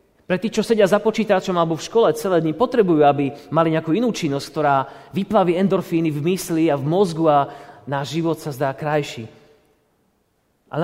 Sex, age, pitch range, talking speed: male, 30-49, 135-190 Hz, 170 wpm